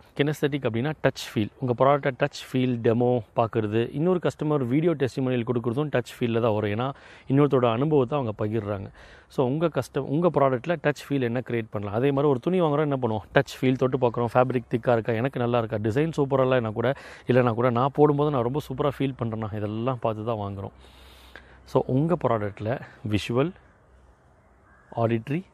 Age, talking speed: 30-49, 170 wpm